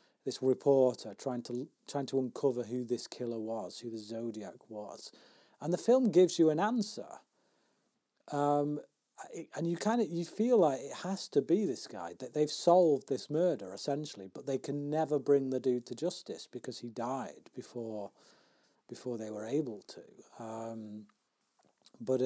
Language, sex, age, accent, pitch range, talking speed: English, male, 40-59, British, 115-145 Hz, 170 wpm